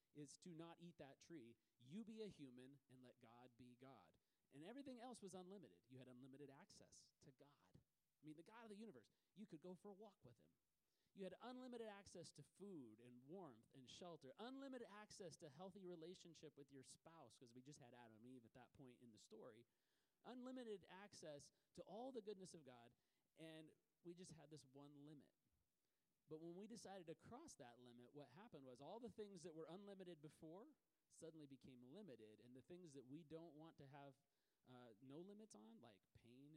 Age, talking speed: 30-49, 200 wpm